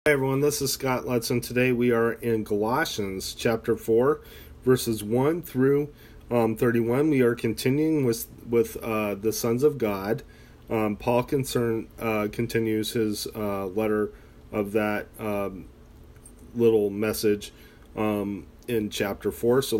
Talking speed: 140 wpm